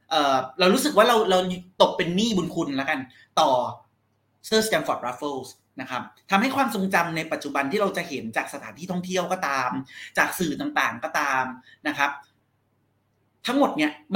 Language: Thai